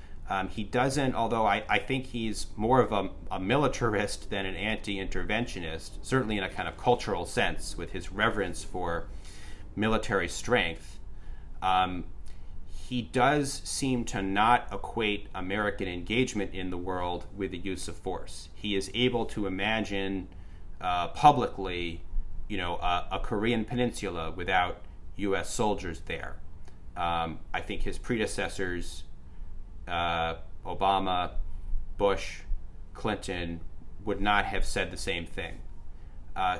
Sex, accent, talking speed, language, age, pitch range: male, American, 130 wpm, English, 30-49, 85-110 Hz